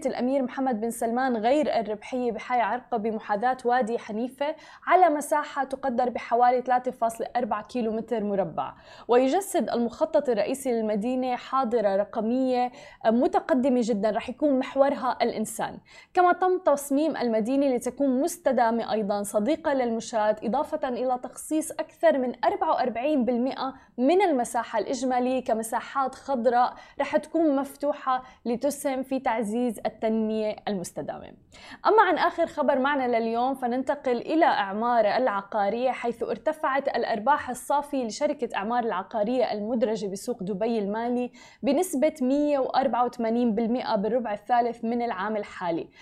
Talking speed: 110 wpm